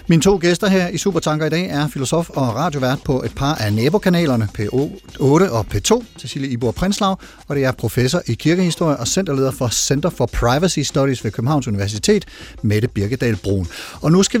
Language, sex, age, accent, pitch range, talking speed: Danish, male, 40-59, native, 130-170 Hz, 190 wpm